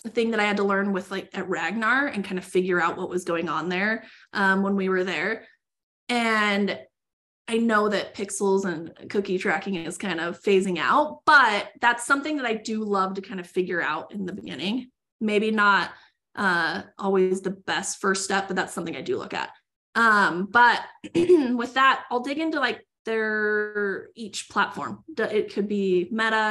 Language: English